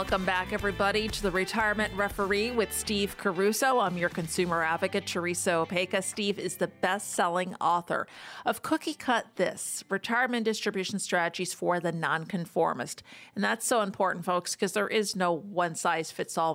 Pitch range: 175-210 Hz